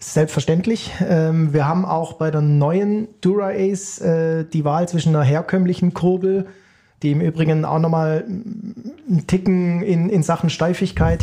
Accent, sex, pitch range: German, male, 155-180 Hz